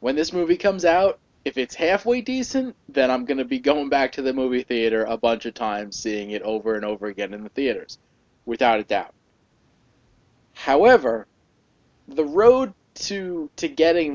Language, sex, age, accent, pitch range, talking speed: English, male, 20-39, American, 115-150 Hz, 180 wpm